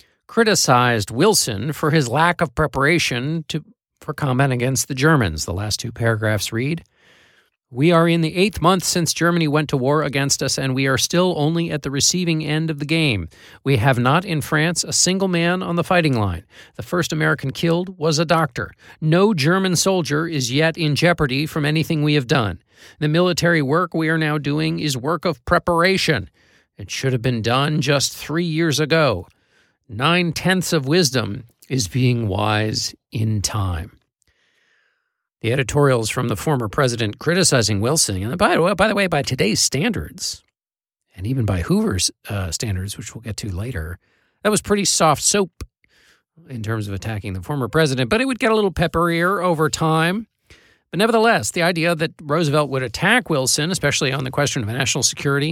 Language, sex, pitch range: English, male, 125-170 Hz